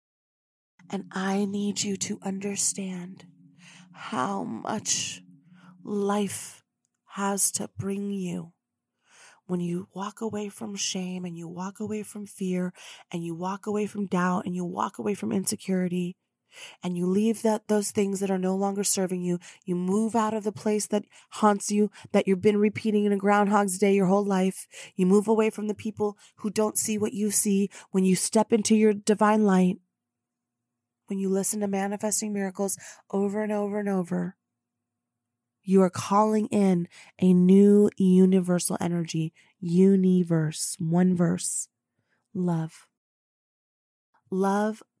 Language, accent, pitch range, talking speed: English, American, 175-205 Hz, 150 wpm